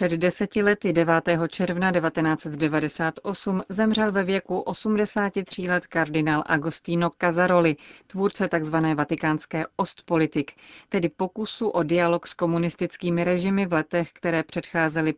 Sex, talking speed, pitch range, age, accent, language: female, 115 wpm, 160-190 Hz, 40-59, native, Czech